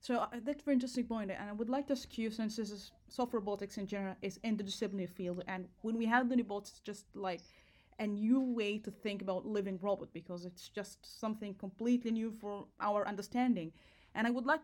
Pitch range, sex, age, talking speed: 190-230 Hz, female, 20-39, 225 wpm